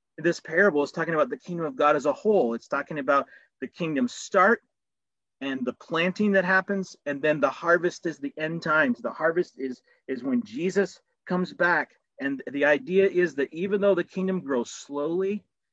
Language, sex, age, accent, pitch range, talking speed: English, male, 40-59, American, 155-200 Hz, 190 wpm